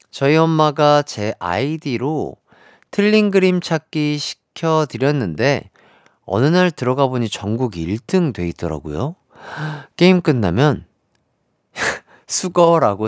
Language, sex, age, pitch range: Korean, male, 40-59, 125-195 Hz